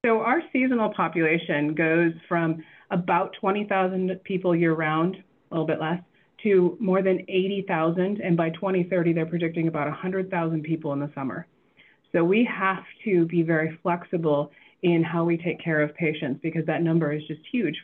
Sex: female